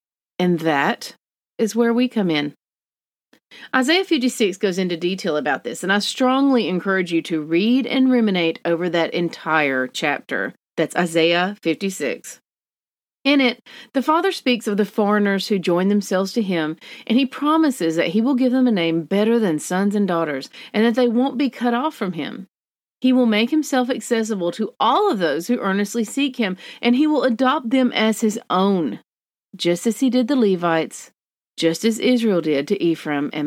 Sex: female